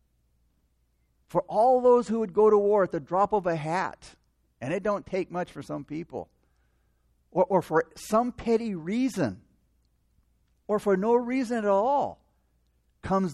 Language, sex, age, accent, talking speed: English, male, 50-69, American, 155 wpm